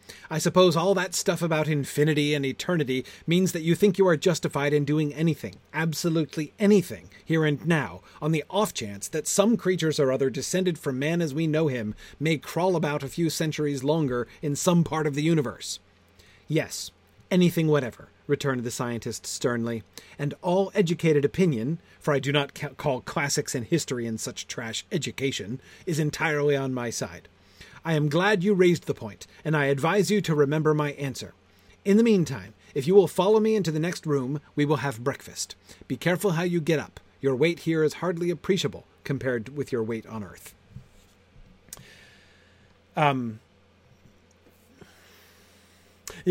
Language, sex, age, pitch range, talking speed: English, male, 30-49, 120-165 Hz, 170 wpm